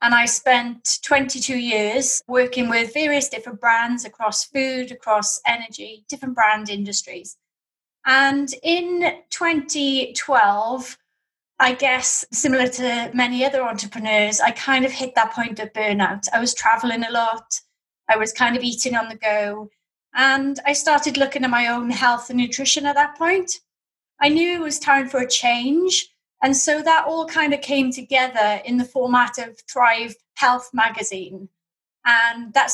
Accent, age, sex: British, 30-49, female